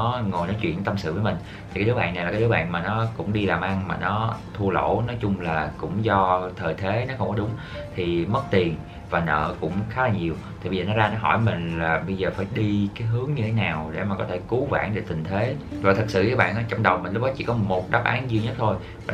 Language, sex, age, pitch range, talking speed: Vietnamese, male, 20-39, 95-115 Hz, 290 wpm